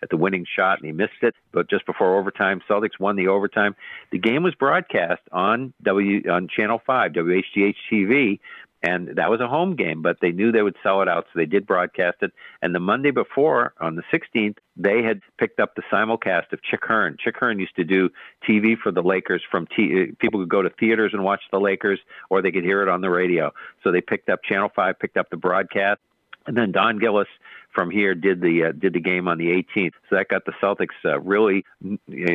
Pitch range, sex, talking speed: 90-100 Hz, male, 230 wpm